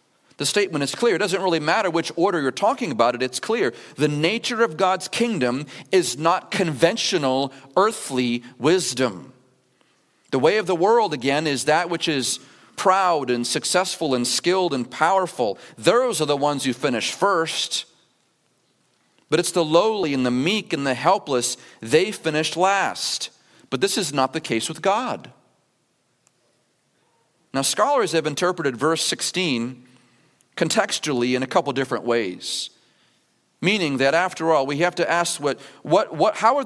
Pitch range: 135-185 Hz